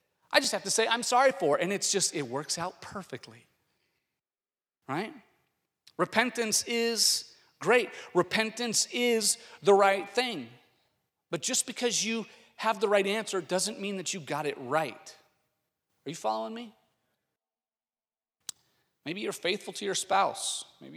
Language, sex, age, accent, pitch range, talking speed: English, male, 40-59, American, 135-195 Hz, 145 wpm